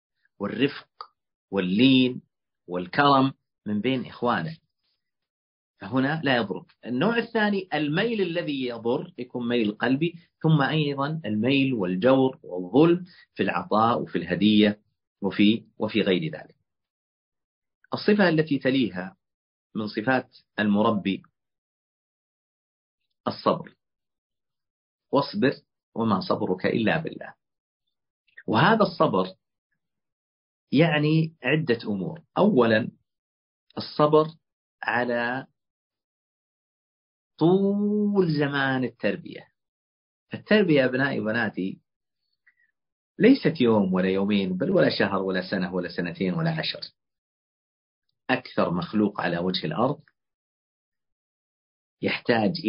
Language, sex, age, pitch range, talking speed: Arabic, male, 40-59, 95-150 Hz, 85 wpm